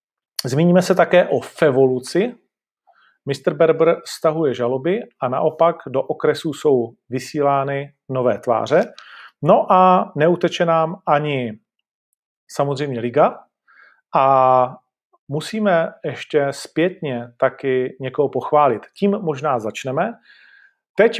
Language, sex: Czech, male